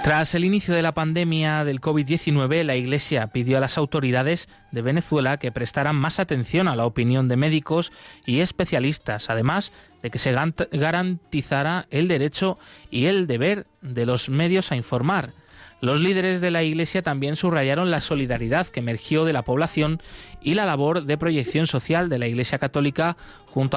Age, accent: 30-49, Spanish